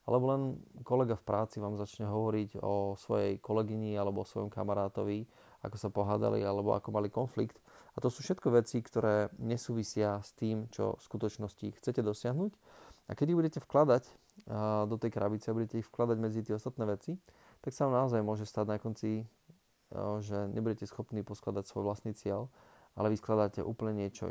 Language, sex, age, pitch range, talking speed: Slovak, male, 20-39, 105-115 Hz, 180 wpm